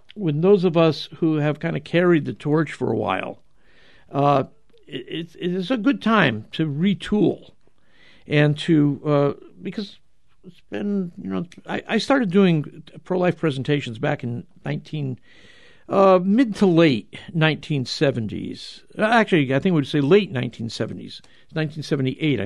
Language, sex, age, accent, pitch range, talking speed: English, male, 60-79, American, 135-175 Hz, 135 wpm